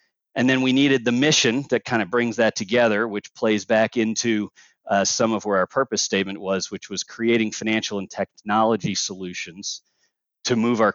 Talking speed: 185 wpm